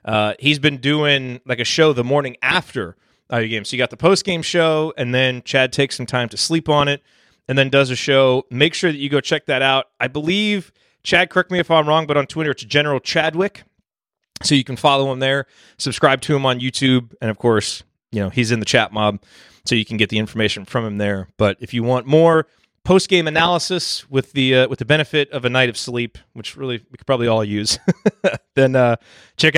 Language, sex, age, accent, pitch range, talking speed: English, male, 30-49, American, 110-145 Hz, 235 wpm